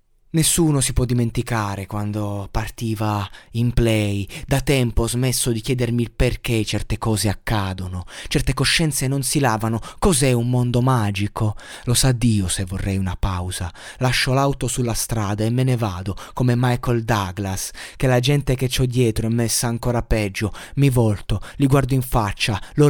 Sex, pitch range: male, 105-130 Hz